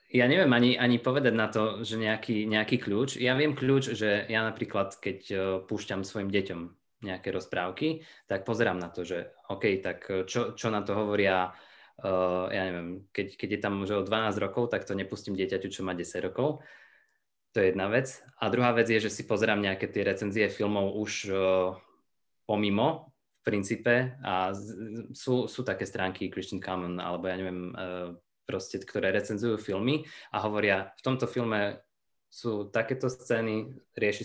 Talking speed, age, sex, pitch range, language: 175 wpm, 20-39, male, 95-115 Hz, Slovak